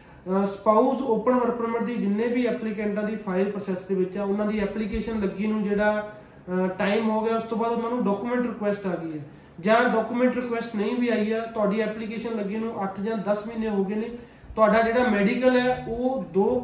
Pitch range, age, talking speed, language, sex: 200-230 Hz, 30-49, 200 wpm, Punjabi, male